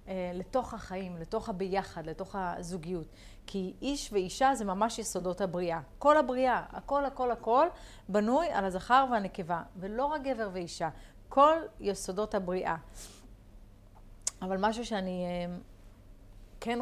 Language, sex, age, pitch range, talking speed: Hebrew, female, 30-49, 180-230 Hz, 120 wpm